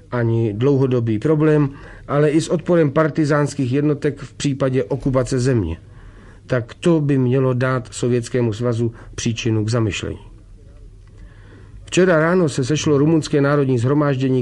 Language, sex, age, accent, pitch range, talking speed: Romanian, male, 40-59, Czech, 115-145 Hz, 125 wpm